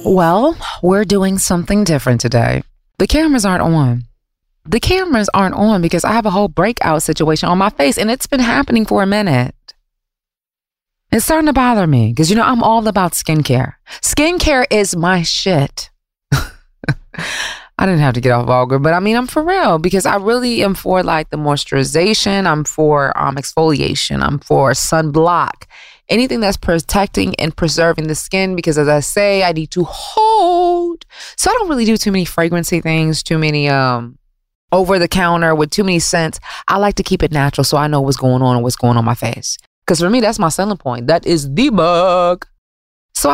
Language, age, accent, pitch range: English, 20-39, American, 140-205 Hz